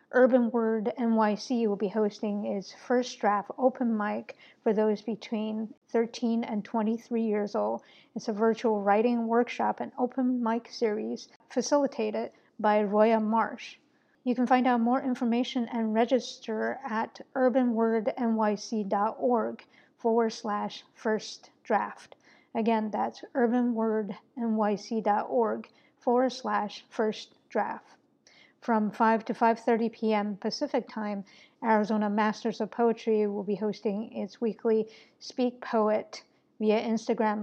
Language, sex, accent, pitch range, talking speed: English, female, American, 215-240 Hz, 115 wpm